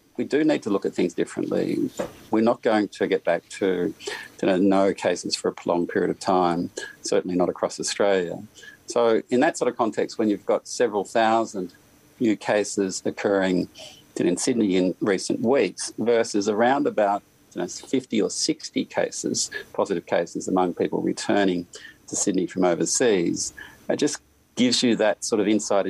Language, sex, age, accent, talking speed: English, male, 50-69, Australian, 160 wpm